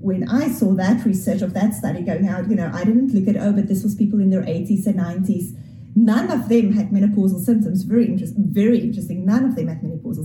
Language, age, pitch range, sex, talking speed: English, 30-49, 195-235 Hz, female, 235 wpm